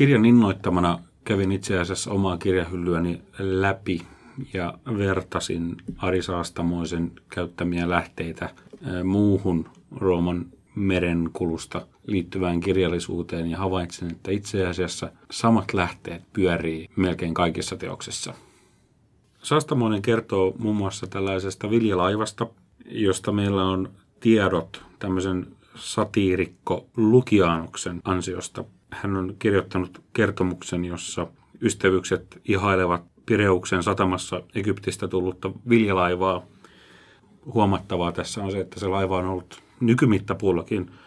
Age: 40-59